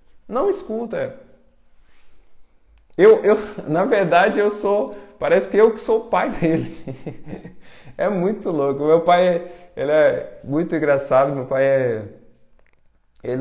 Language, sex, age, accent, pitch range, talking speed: Portuguese, male, 20-39, Brazilian, 140-215 Hz, 135 wpm